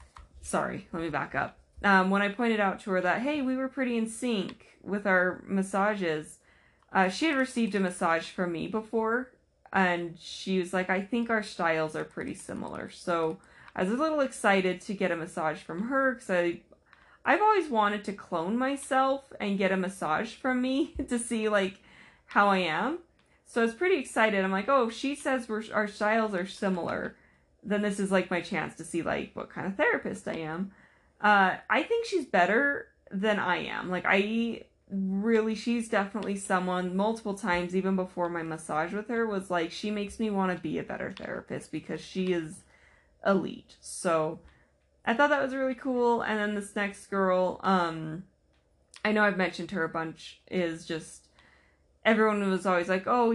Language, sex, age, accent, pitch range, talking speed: English, female, 20-39, American, 180-225 Hz, 190 wpm